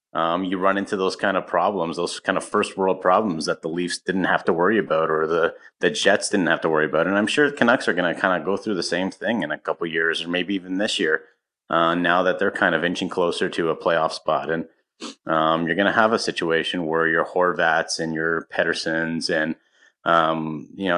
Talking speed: 245 wpm